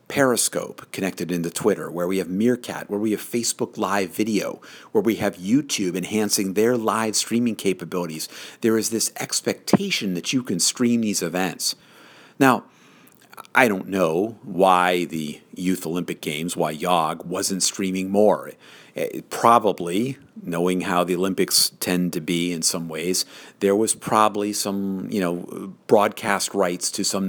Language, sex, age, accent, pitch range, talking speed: English, male, 50-69, American, 90-110 Hz, 150 wpm